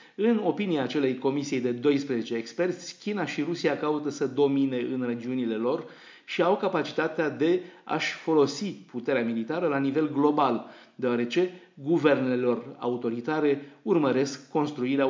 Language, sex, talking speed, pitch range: Romanian, male, 130 wpm, 125-160 Hz